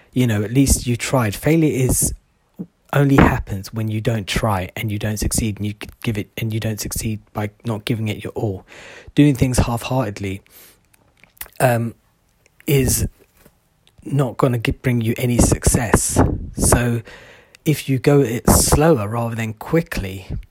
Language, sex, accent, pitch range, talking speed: English, male, British, 105-125 Hz, 150 wpm